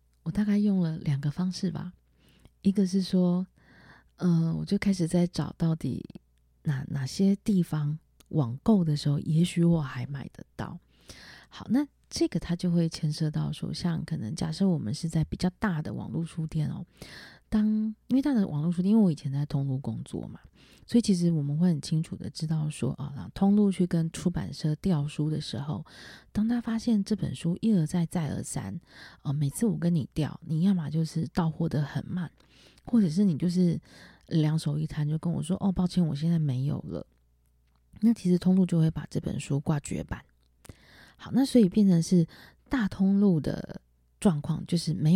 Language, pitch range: Chinese, 150-190 Hz